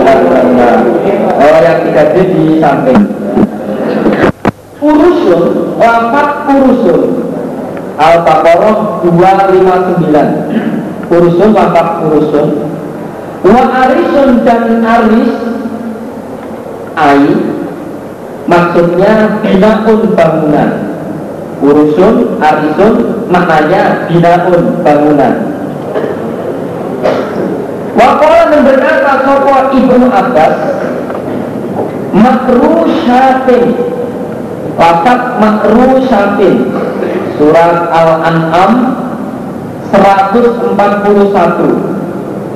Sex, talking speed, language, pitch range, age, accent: male, 55 wpm, Indonesian, 170-250 Hz, 50-69, native